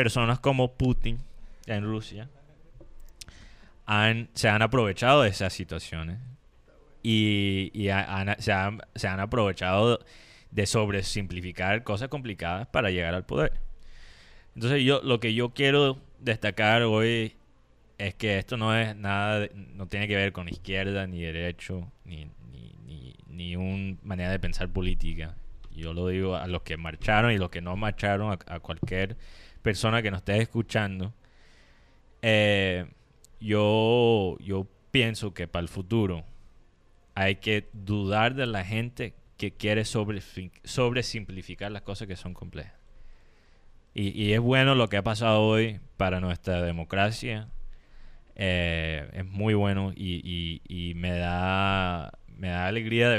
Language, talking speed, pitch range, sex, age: Spanish, 145 wpm, 90-110 Hz, male, 20-39